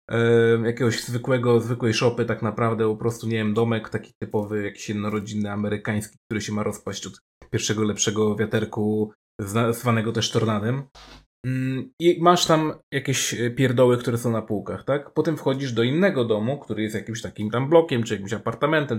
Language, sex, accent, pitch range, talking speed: Polish, male, native, 110-150 Hz, 160 wpm